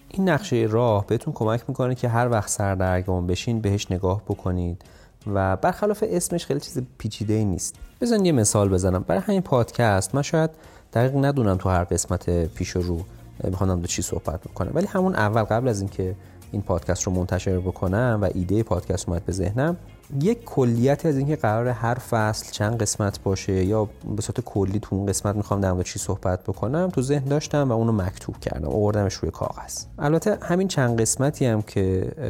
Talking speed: 180 wpm